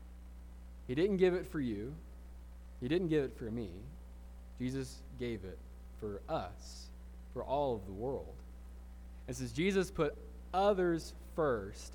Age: 20-39